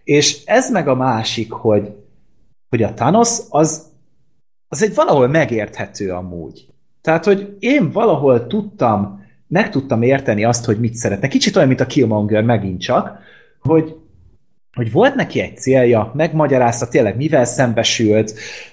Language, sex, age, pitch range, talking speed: Hungarian, male, 30-49, 105-145 Hz, 140 wpm